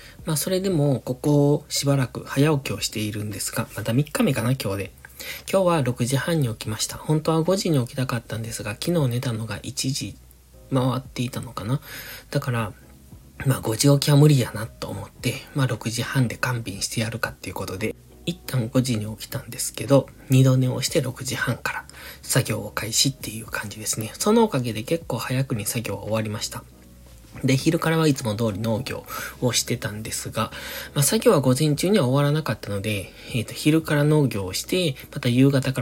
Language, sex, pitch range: Japanese, male, 110-140 Hz